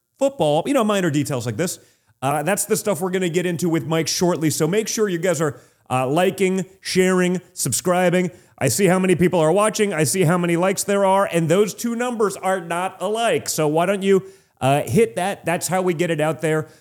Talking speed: 230 wpm